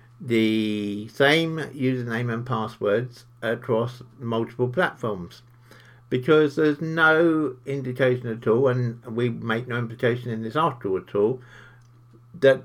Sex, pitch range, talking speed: male, 110-125 Hz, 120 wpm